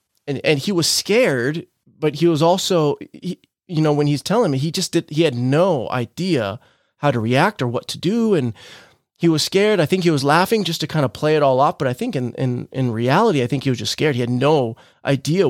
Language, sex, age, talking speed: English, male, 30-49, 250 wpm